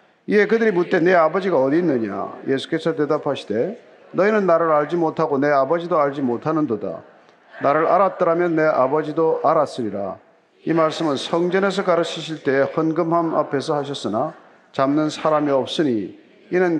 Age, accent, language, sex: 40-59, native, Korean, male